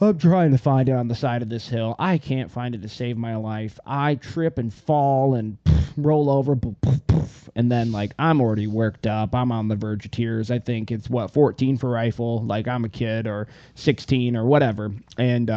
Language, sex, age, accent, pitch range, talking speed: English, male, 20-39, American, 110-135 Hz, 210 wpm